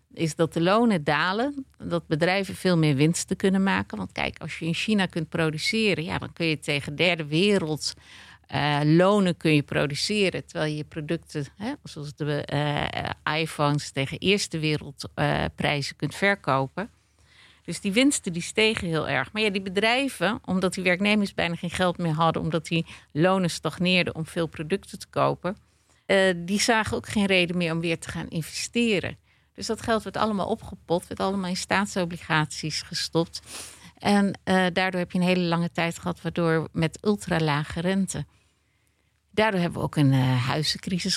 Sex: female